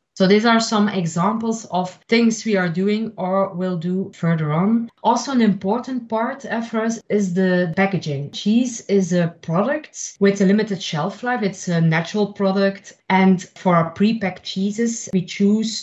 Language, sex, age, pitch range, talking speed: English, female, 30-49, 185-215 Hz, 165 wpm